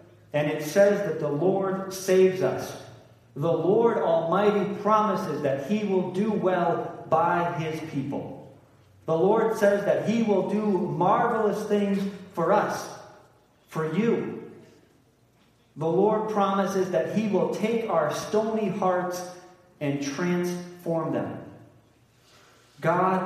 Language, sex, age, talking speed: English, male, 40-59, 120 wpm